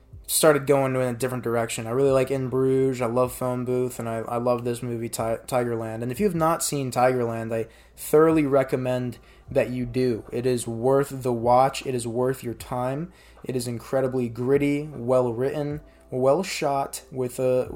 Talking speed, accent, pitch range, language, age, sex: 185 wpm, American, 120-135 Hz, English, 20-39, male